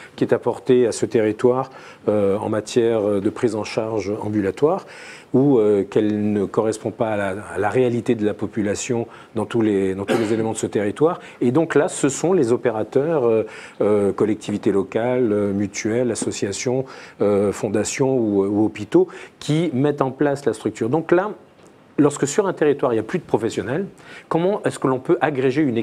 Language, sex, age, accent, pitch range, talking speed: French, male, 40-59, French, 105-135 Hz, 185 wpm